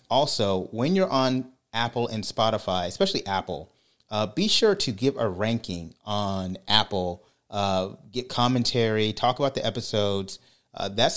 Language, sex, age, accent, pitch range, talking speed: English, male, 30-49, American, 95-120 Hz, 145 wpm